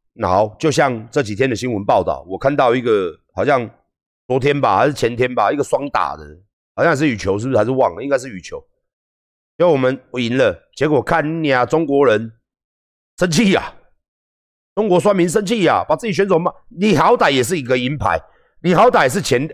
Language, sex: Chinese, male